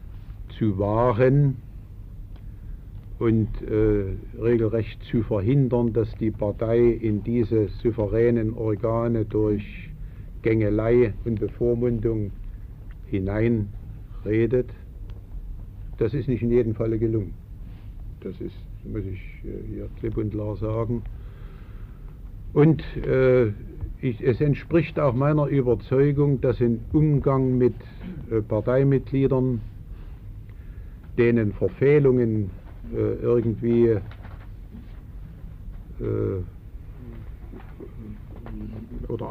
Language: German